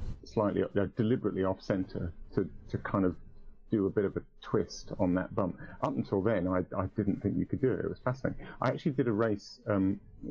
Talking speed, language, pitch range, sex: 225 wpm, English, 95-110 Hz, male